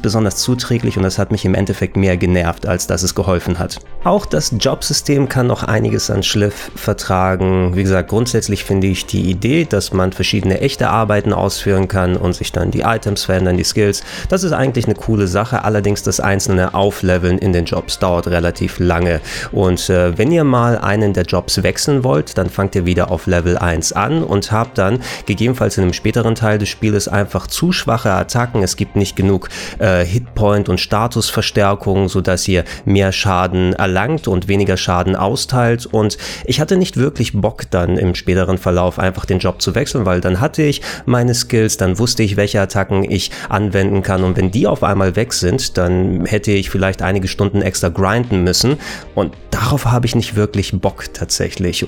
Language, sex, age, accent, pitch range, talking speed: German, male, 30-49, German, 95-115 Hz, 190 wpm